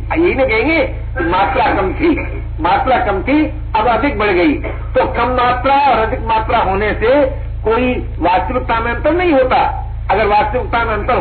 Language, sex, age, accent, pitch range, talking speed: Hindi, male, 60-79, native, 215-345 Hz, 165 wpm